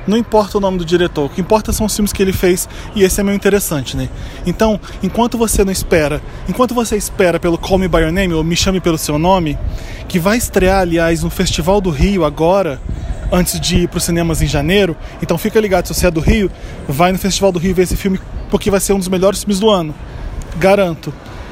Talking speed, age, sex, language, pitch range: 235 wpm, 20-39, male, Portuguese, 165-205 Hz